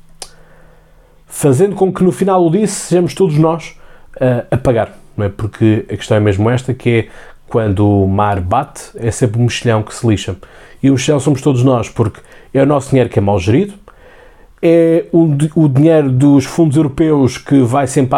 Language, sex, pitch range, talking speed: Portuguese, male, 115-180 Hz, 195 wpm